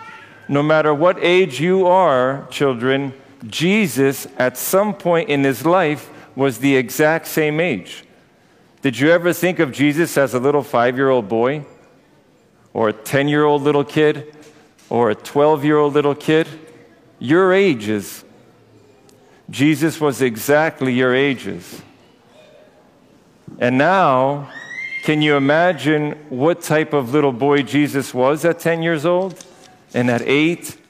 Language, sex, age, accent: English, male, 50-69, American